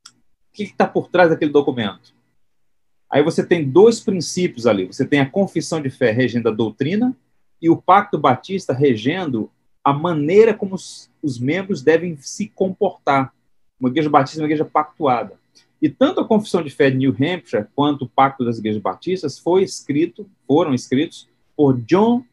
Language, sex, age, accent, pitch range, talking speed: Portuguese, male, 40-59, Brazilian, 130-190 Hz, 170 wpm